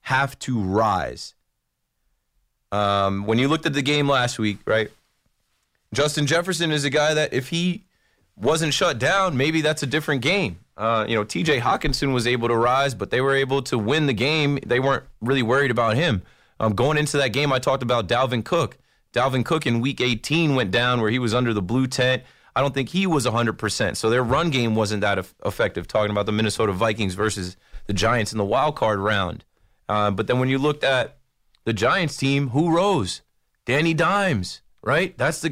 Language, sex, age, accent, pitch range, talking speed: English, male, 20-39, American, 110-150 Hz, 200 wpm